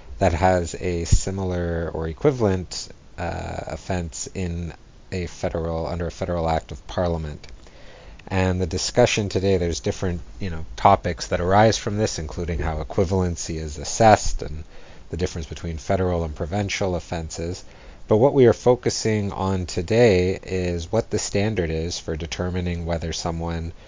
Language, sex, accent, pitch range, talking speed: English, male, American, 80-95 Hz, 150 wpm